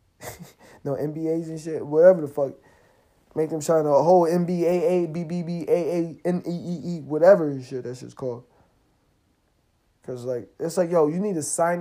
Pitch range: 125-155 Hz